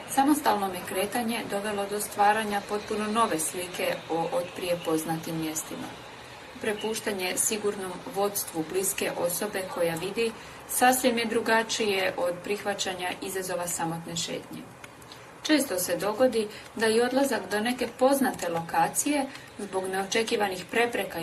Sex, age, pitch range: female, 30-49, 190-235 Hz